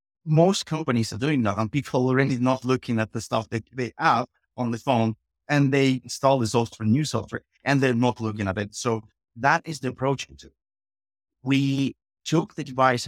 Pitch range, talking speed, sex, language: 110-135 Hz, 195 wpm, male, English